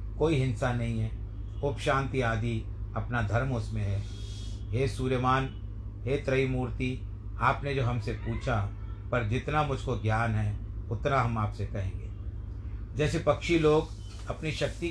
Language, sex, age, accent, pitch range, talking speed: Hindi, male, 50-69, native, 100-130 Hz, 135 wpm